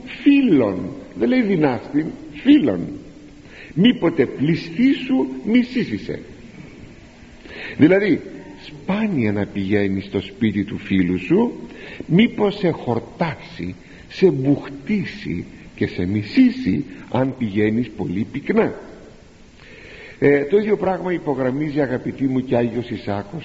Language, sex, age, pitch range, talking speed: Greek, male, 60-79, 105-165 Hz, 100 wpm